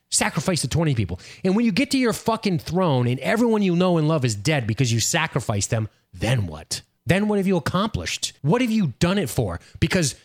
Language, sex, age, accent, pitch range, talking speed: English, male, 30-49, American, 115-165 Hz, 220 wpm